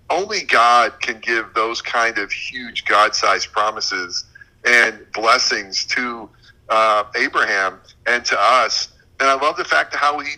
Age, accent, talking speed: 40-59, American, 150 wpm